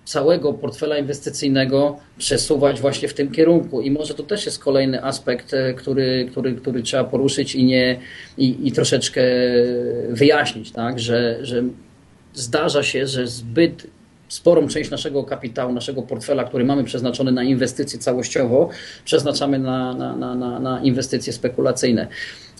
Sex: male